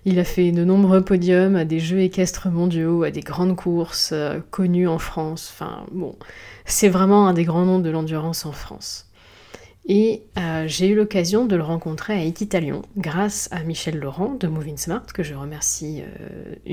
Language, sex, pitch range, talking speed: French, female, 155-190 Hz, 185 wpm